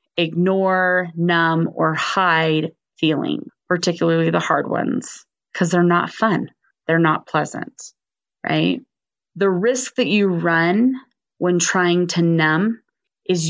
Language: English